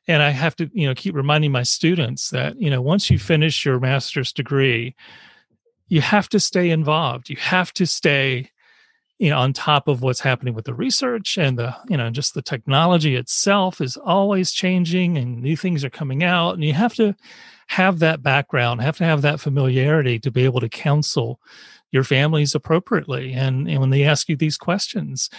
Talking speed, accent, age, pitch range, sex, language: 195 wpm, American, 40-59, 135-170 Hz, male, English